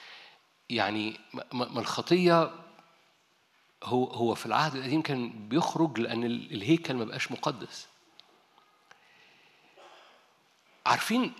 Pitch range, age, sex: 120-175 Hz, 50-69, male